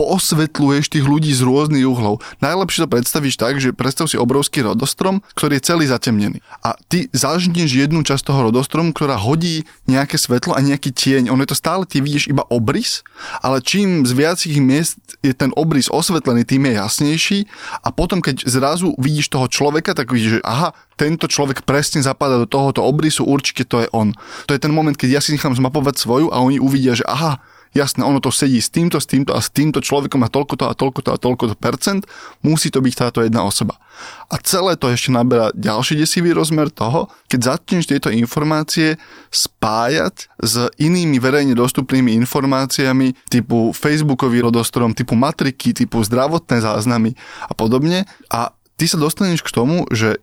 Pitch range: 125-155 Hz